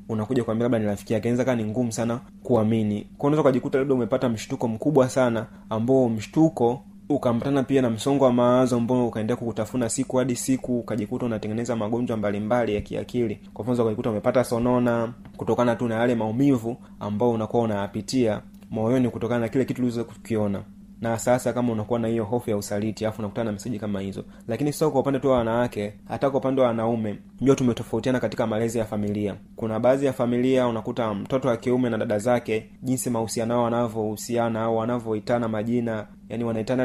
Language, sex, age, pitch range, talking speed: Swahili, male, 30-49, 110-130 Hz, 180 wpm